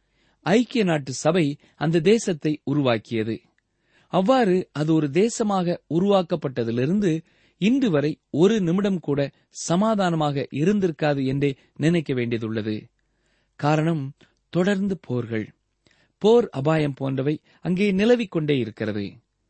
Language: Tamil